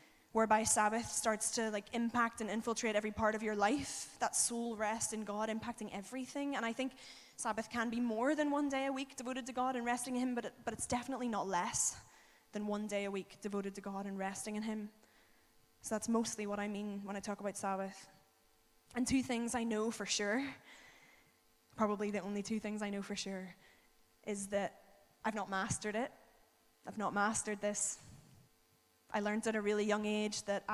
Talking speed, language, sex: 200 wpm, English, female